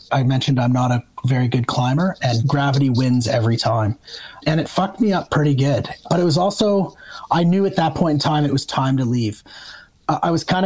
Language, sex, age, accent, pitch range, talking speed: English, male, 30-49, American, 125-160 Hz, 225 wpm